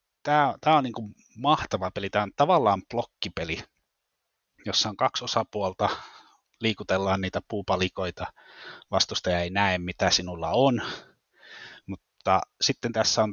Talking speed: 115 wpm